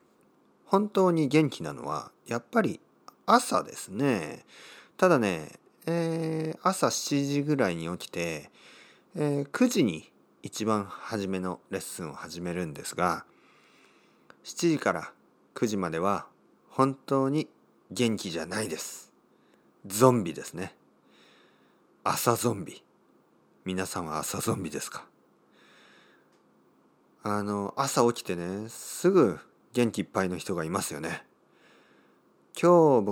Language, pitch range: Japanese, 85-135 Hz